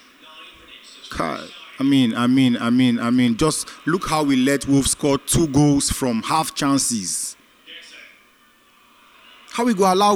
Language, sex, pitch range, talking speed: English, male, 140-225 Hz, 140 wpm